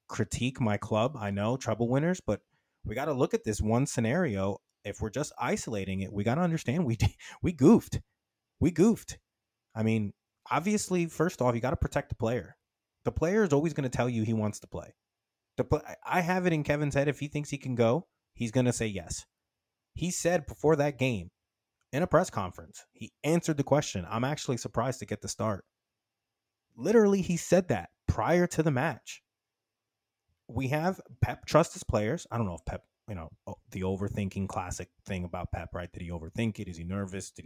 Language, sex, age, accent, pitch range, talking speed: English, male, 20-39, American, 105-140 Hz, 205 wpm